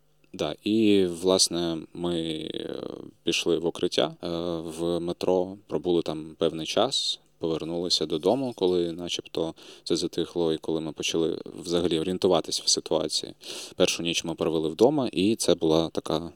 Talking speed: 135 wpm